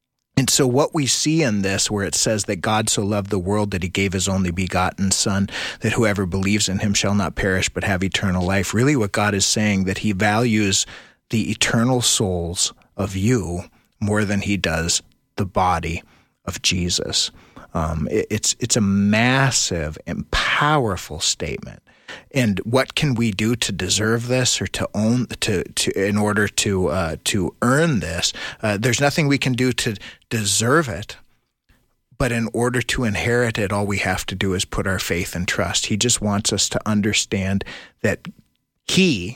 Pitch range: 95-115 Hz